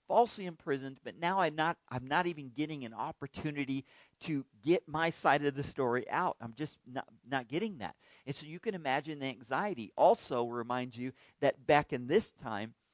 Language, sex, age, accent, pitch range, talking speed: English, male, 40-59, American, 125-155 Hz, 190 wpm